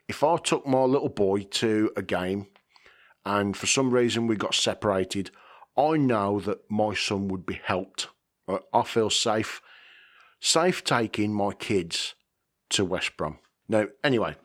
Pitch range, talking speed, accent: 95-120 Hz, 150 wpm, British